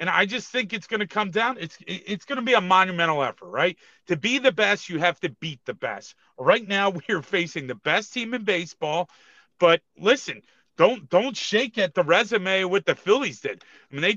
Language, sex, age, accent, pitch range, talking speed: English, male, 40-59, American, 170-220 Hz, 225 wpm